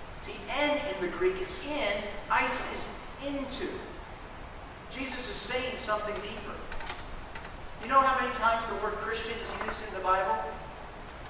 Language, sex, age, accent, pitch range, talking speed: English, male, 40-59, American, 225-290 Hz, 150 wpm